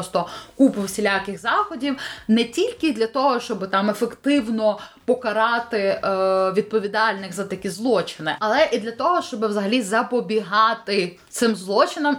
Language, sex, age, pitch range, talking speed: Ukrainian, female, 20-39, 200-265 Hz, 125 wpm